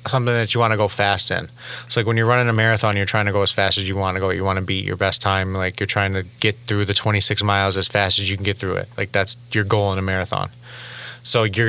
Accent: American